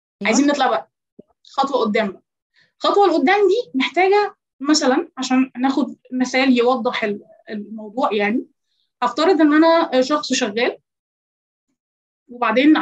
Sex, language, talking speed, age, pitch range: female, Arabic, 110 wpm, 20-39, 245-320 Hz